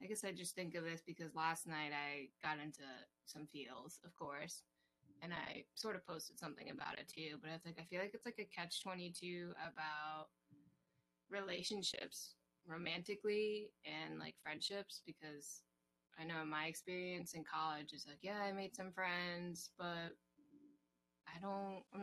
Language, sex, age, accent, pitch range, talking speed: English, female, 20-39, American, 155-190 Hz, 165 wpm